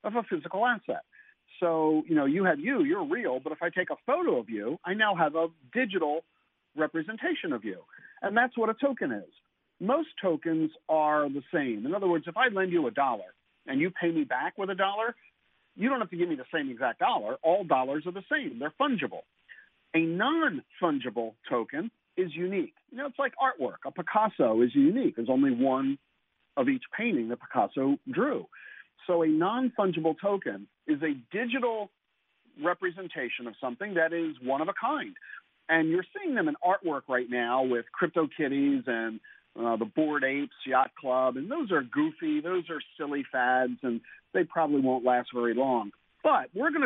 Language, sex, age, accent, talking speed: English, male, 50-69, American, 190 wpm